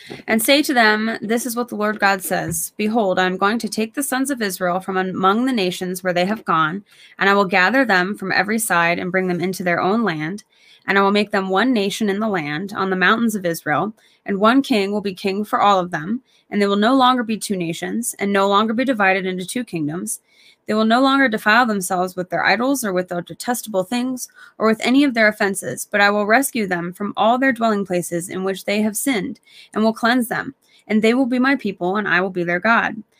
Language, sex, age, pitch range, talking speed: English, female, 20-39, 190-235 Hz, 245 wpm